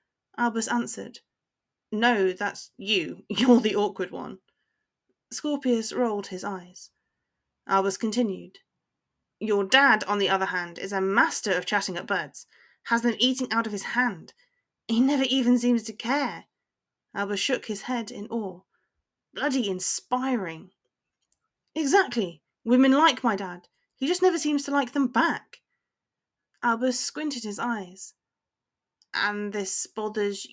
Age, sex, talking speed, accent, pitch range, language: 30-49, female, 135 wpm, British, 200-260 Hz, English